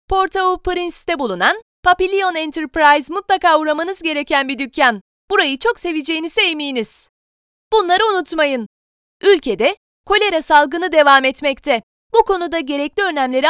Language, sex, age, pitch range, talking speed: Turkish, female, 20-39, 275-370 Hz, 110 wpm